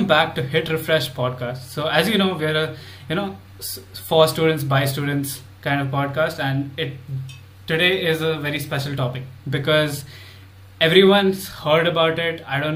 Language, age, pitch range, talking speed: English, 20-39, 135-160 Hz, 165 wpm